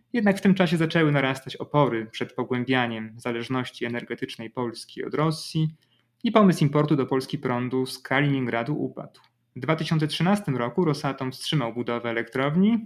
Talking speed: 140 wpm